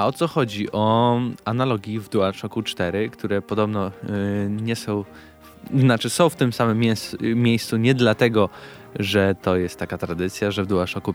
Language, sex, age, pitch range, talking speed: Polish, male, 20-39, 100-115 Hz, 160 wpm